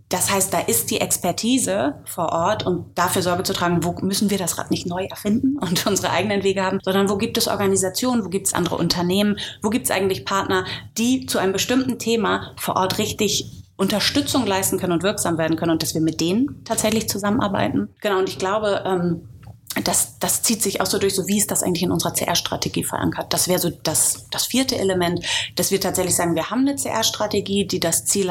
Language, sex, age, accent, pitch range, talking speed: German, female, 30-49, German, 170-205 Hz, 215 wpm